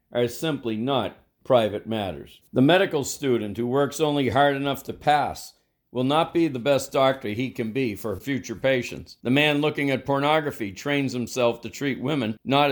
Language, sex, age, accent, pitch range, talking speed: English, male, 50-69, American, 115-140 Hz, 180 wpm